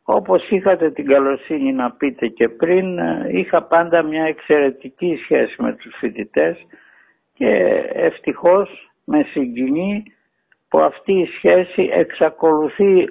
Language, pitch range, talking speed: Greek, 135-185 Hz, 115 wpm